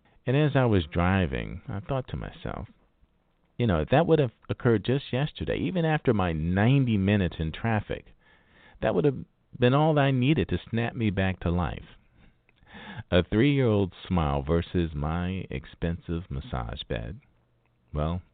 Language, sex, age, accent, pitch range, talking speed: English, male, 40-59, American, 85-120 Hz, 160 wpm